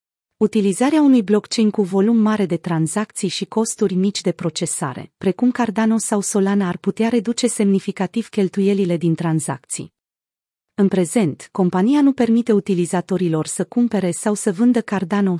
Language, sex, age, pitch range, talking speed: Romanian, female, 30-49, 180-220 Hz, 140 wpm